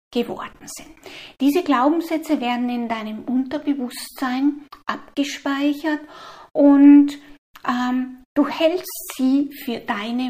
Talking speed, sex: 95 wpm, female